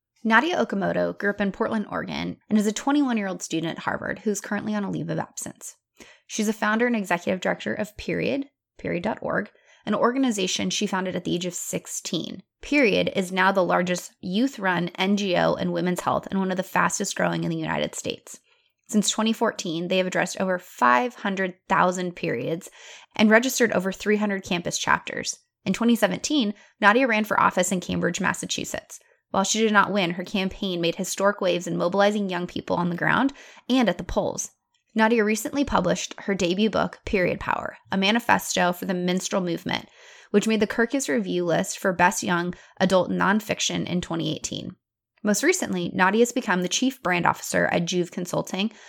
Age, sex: 20-39, female